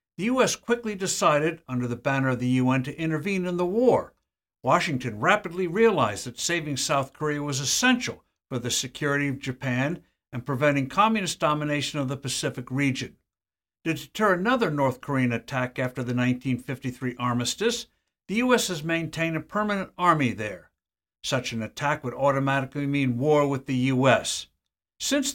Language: English